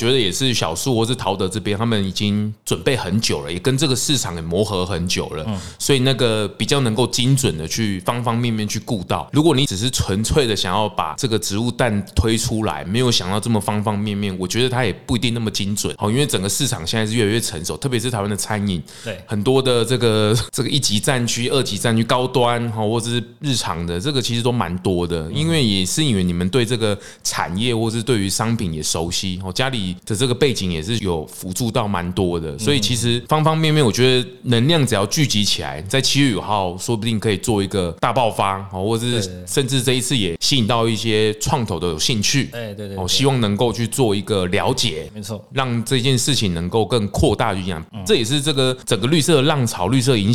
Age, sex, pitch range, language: 20-39, male, 100-130 Hz, Chinese